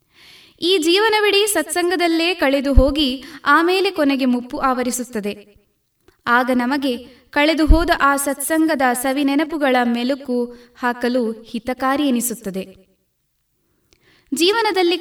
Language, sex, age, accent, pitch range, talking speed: Kannada, female, 20-39, native, 250-320 Hz, 80 wpm